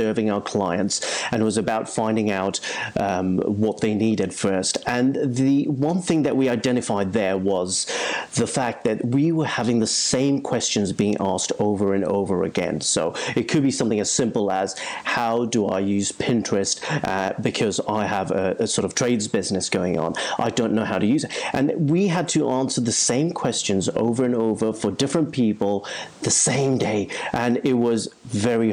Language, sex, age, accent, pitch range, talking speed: English, male, 40-59, British, 105-140 Hz, 190 wpm